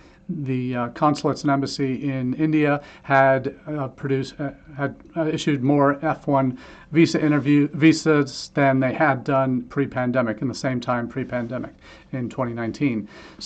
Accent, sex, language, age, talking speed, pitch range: American, male, English, 40-59, 135 wpm, 125-145 Hz